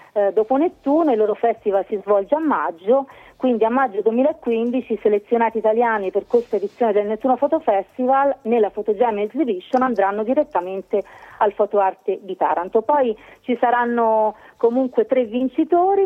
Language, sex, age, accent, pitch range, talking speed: Italian, female, 40-59, native, 200-255 Hz, 140 wpm